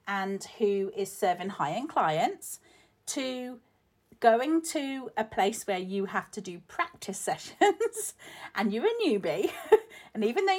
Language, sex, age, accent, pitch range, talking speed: English, female, 40-59, British, 170-230 Hz, 140 wpm